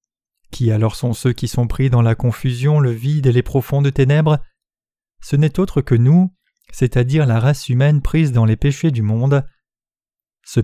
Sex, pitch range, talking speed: male, 115-145 Hz, 180 wpm